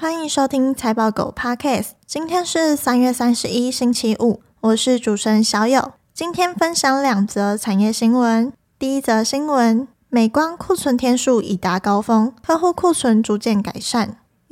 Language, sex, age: Chinese, female, 10-29